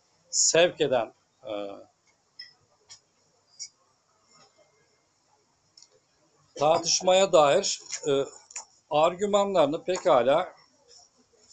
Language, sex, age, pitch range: Turkish, male, 50-69, 135-170 Hz